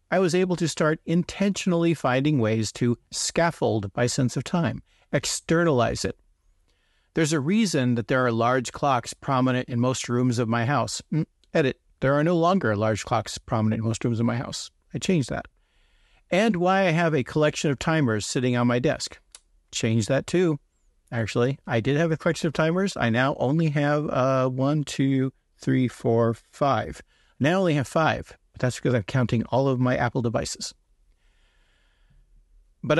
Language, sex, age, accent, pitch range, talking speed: English, male, 50-69, American, 120-170 Hz, 175 wpm